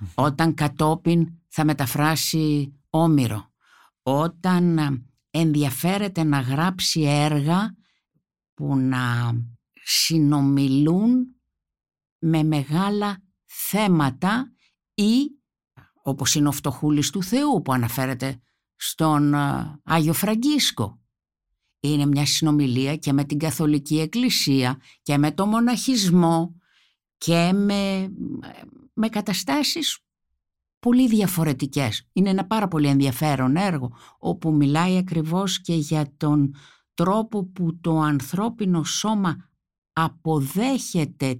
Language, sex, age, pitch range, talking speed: Greek, female, 50-69, 140-195 Hz, 95 wpm